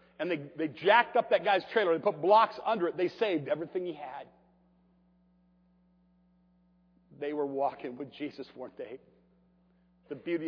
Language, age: English, 50-69